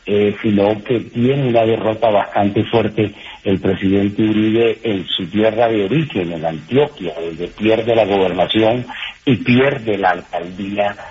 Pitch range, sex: 105-125 Hz, male